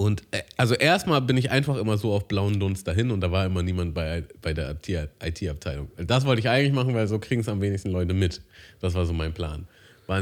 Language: German